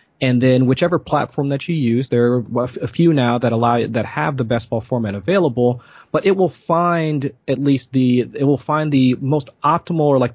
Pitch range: 115-140 Hz